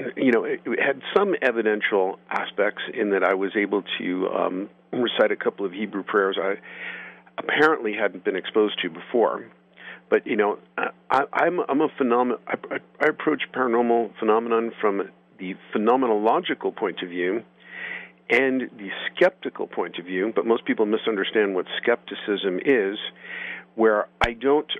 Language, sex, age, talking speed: English, male, 50-69, 140 wpm